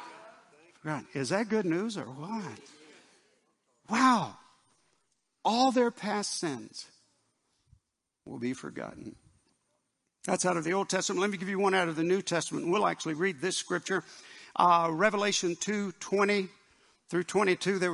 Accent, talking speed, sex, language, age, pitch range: American, 140 wpm, male, English, 60-79, 165-205 Hz